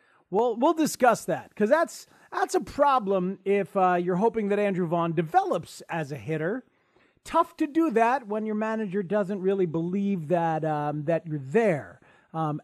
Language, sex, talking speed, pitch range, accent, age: English, male, 170 wpm, 165-230 Hz, American, 40-59